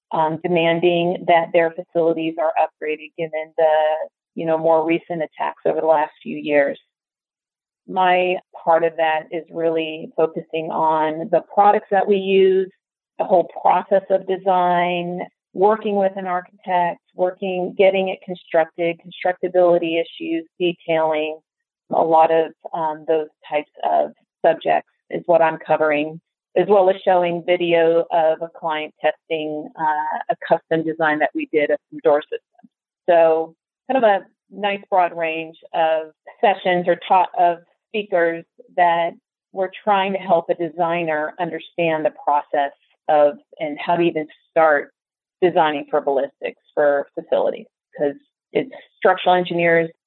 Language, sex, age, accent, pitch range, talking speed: English, female, 30-49, American, 160-185 Hz, 140 wpm